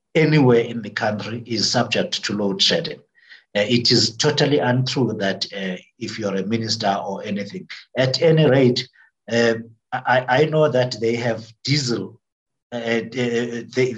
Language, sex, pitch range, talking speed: English, male, 105-125 Hz, 150 wpm